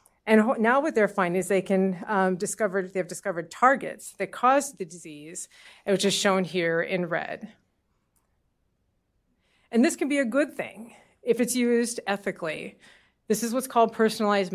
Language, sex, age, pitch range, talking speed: English, female, 40-59, 185-220 Hz, 165 wpm